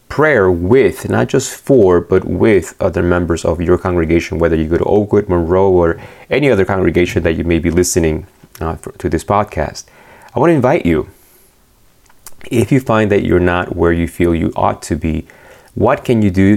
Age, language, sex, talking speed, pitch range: 30-49, English, male, 195 wpm, 85-110 Hz